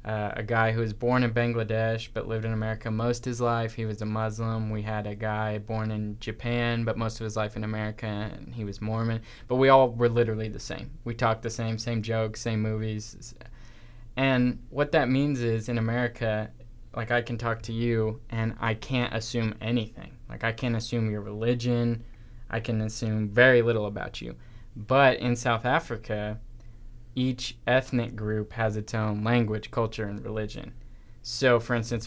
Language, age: English, 10-29